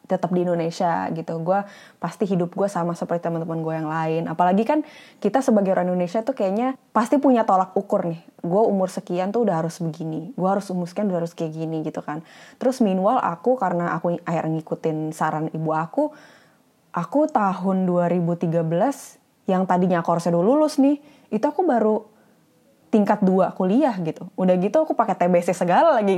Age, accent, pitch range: 20-39, native, 170-225 Hz